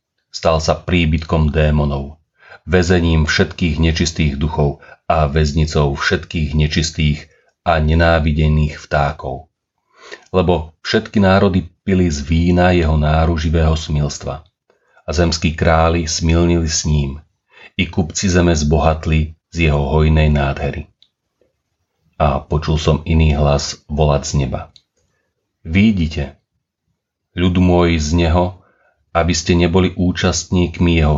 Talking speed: 110 wpm